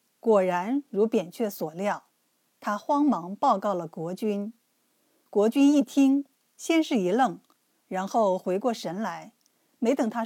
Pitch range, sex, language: 200-270 Hz, female, Chinese